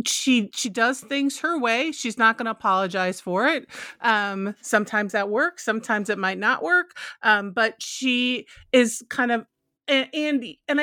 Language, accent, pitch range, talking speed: English, American, 195-250 Hz, 165 wpm